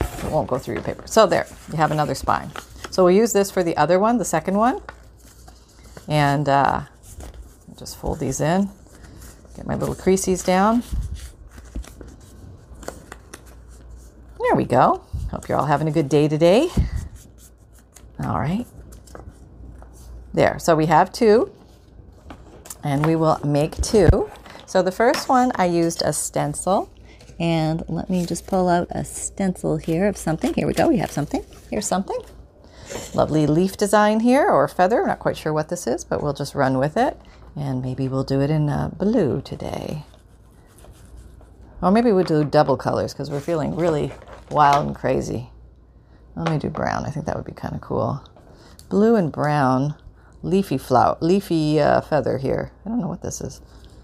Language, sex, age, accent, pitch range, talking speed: English, female, 40-59, American, 130-185 Hz, 170 wpm